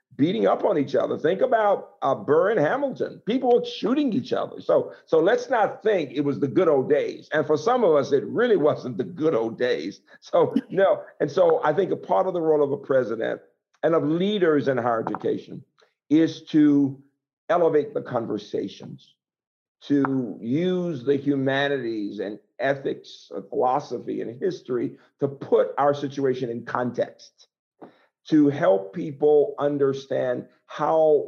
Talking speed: 160 wpm